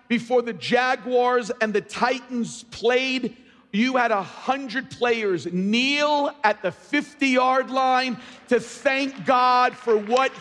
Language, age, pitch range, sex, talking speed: English, 50-69, 210-275 Hz, male, 125 wpm